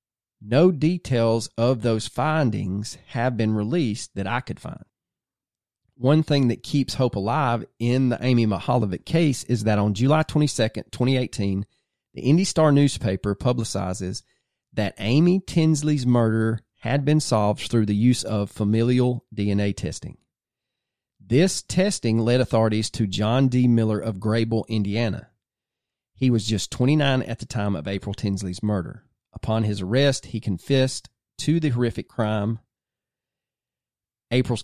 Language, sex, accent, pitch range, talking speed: English, male, American, 105-130 Hz, 135 wpm